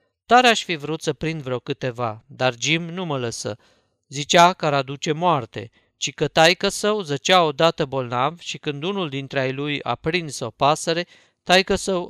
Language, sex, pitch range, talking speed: Romanian, male, 130-170 Hz, 185 wpm